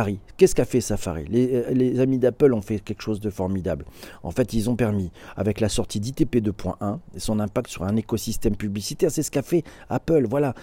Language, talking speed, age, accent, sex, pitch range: French, 205 wpm, 40-59, French, male, 105-135 Hz